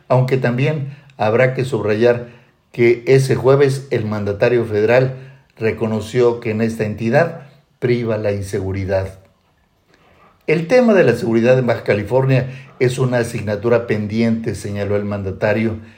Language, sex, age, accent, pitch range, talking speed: Spanish, male, 50-69, Mexican, 110-135 Hz, 130 wpm